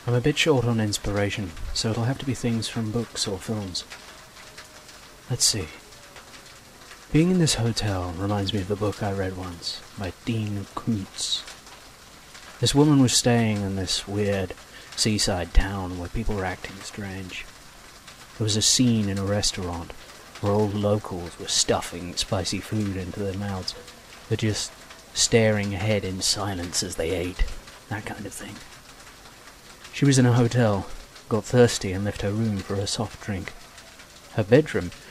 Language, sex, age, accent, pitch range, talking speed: English, male, 30-49, British, 95-115 Hz, 160 wpm